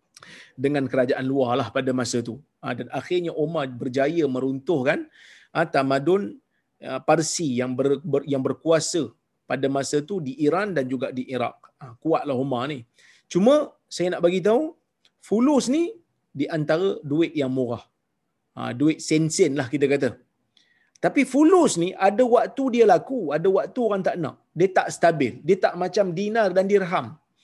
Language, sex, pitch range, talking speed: Malayalam, male, 140-215 Hz, 150 wpm